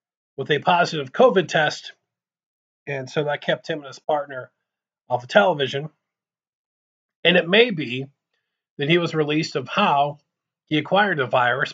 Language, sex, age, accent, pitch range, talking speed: English, male, 40-59, American, 130-170 Hz, 155 wpm